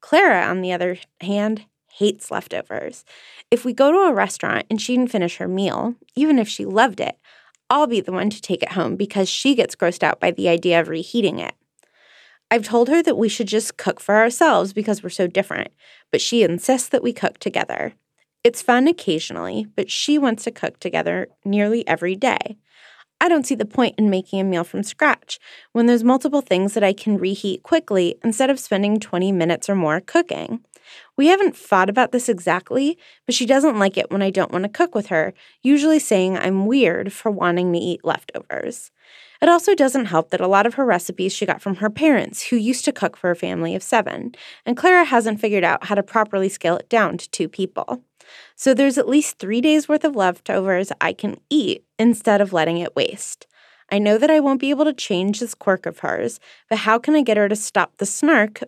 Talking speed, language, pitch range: 215 wpm, English, 190-260 Hz